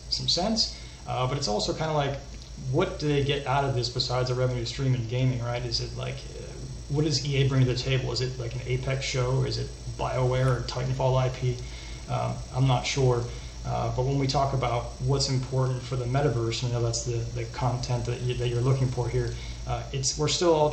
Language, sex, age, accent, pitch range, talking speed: English, male, 30-49, American, 120-135 Hz, 225 wpm